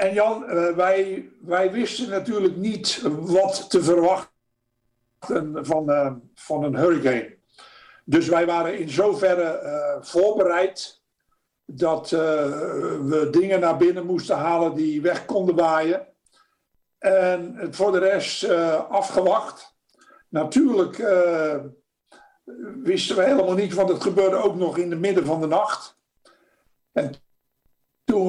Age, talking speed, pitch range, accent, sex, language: 60-79, 125 wpm, 165-195 Hz, Dutch, male, Dutch